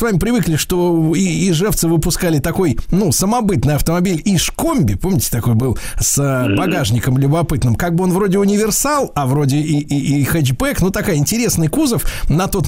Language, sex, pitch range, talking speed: Russian, male, 140-195 Hz, 170 wpm